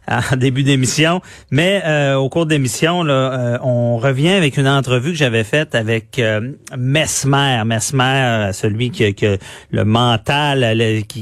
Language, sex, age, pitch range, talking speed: French, male, 40-59, 120-150 Hz, 155 wpm